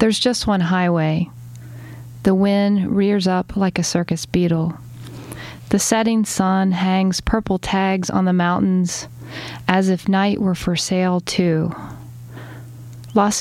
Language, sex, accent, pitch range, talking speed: English, female, American, 155-195 Hz, 130 wpm